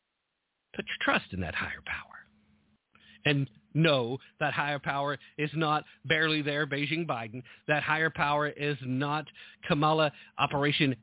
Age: 50-69